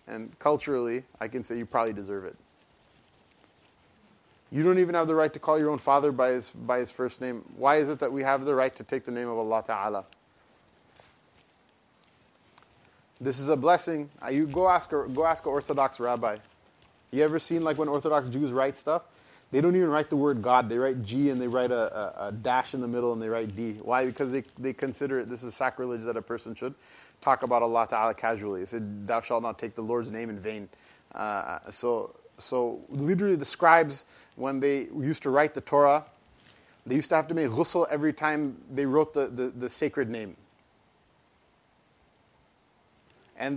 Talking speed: 200 wpm